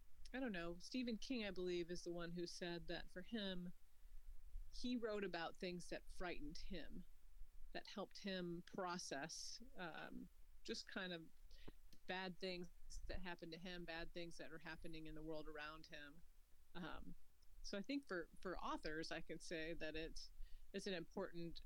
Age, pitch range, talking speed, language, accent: 40-59, 155-190 Hz, 170 wpm, English, American